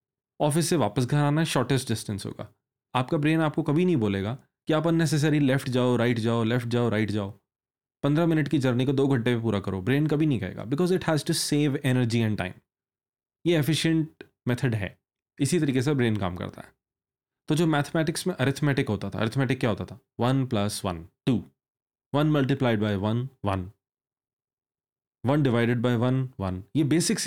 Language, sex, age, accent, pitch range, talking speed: Hindi, male, 30-49, native, 115-160 Hz, 180 wpm